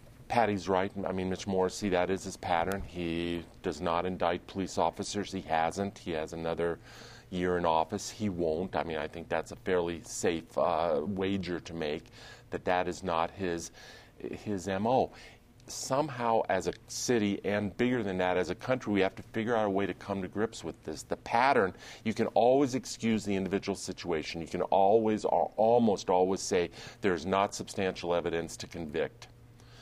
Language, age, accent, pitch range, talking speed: English, 40-59, American, 90-115 Hz, 180 wpm